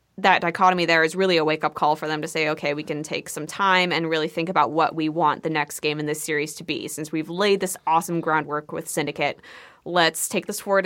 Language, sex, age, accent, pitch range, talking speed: English, female, 20-39, American, 155-185 Hz, 250 wpm